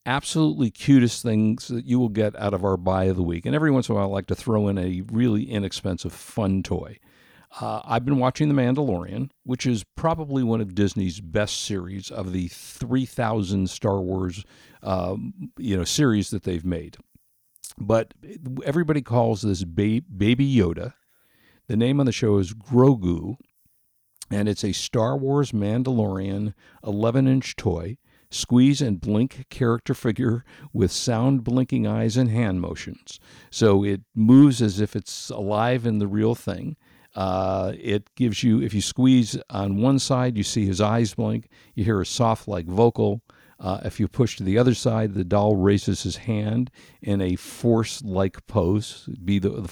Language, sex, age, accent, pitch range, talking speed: English, male, 50-69, American, 100-125 Hz, 175 wpm